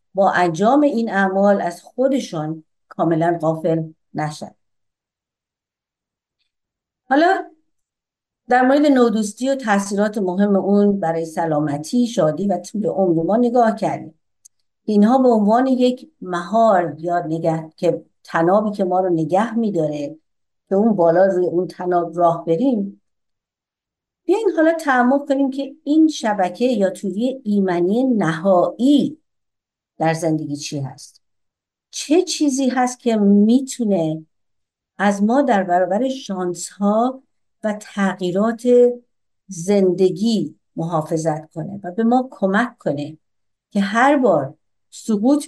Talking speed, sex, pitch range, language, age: 115 wpm, female, 170-240 Hz, Persian, 50-69